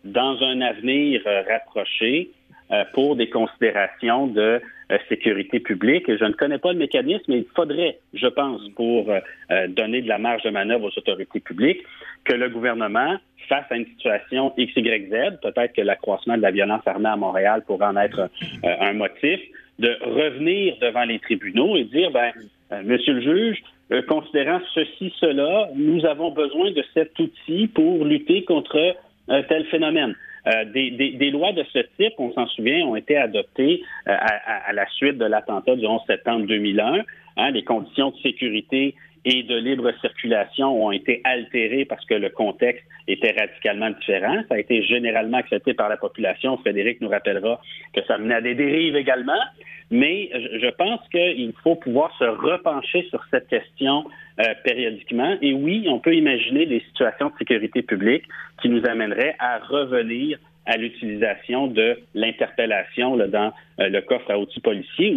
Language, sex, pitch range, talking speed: French, male, 115-175 Hz, 170 wpm